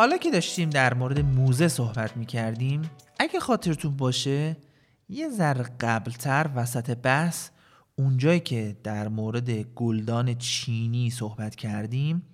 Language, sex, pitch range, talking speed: Persian, male, 115-155 Hz, 120 wpm